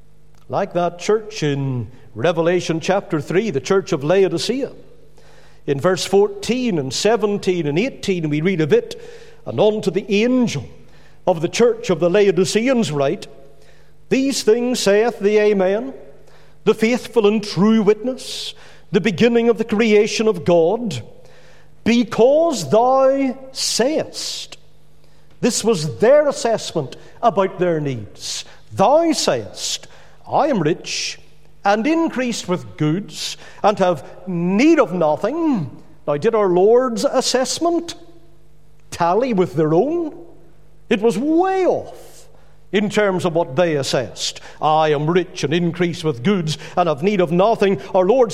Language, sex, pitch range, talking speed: English, male, 170-230 Hz, 135 wpm